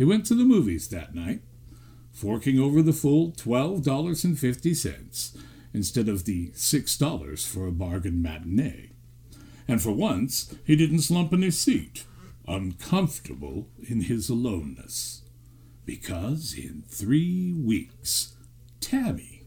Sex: male